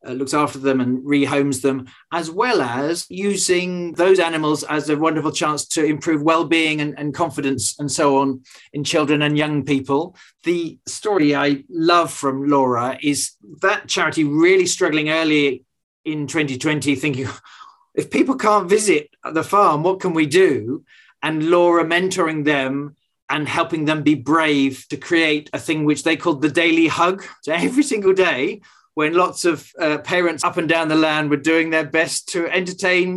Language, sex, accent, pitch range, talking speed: English, male, British, 140-175 Hz, 170 wpm